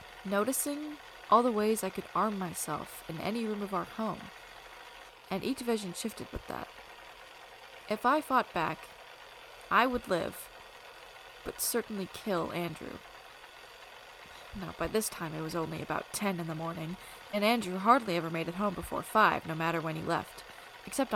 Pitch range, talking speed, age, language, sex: 180-235 Hz, 165 wpm, 20-39, English, female